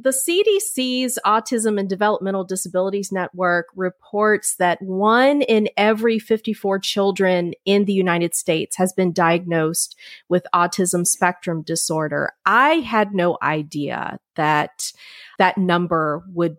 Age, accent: 30-49, American